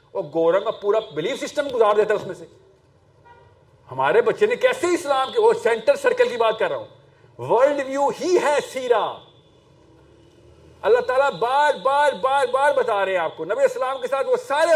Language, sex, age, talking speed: Urdu, male, 50-69, 180 wpm